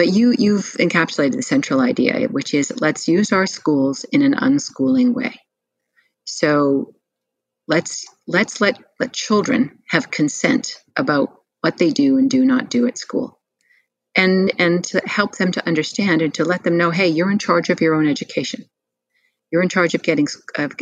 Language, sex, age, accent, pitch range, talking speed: English, female, 40-59, American, 165-260 Hz, 175 wpm